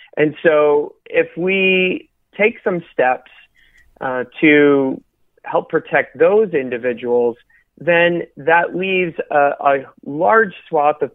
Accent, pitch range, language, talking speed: American, 130-170 Hz, English, 115 wpm